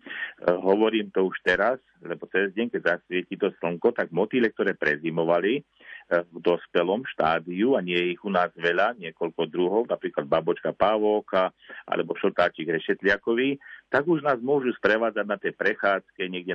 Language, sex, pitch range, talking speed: Slovak, male, 90-120 Hz, 150 wpm